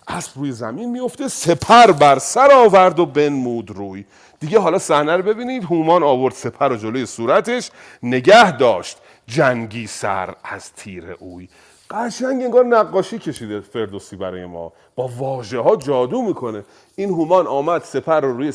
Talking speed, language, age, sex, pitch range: 150 wpm, Persian, 40-59, male, 115-190 Hz